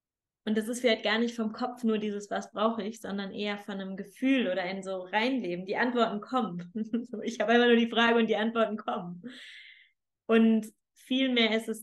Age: 20-39